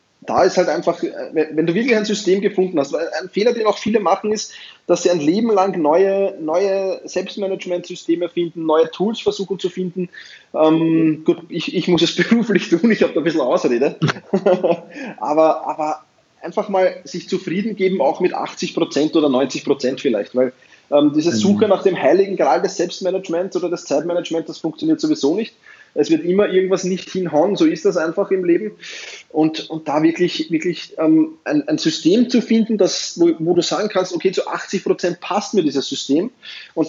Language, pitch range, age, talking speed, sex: German, 170-220 Hz, 20-39, 185 wpm, male